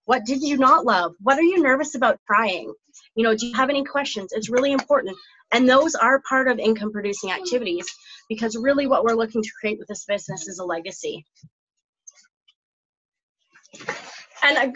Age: 30-49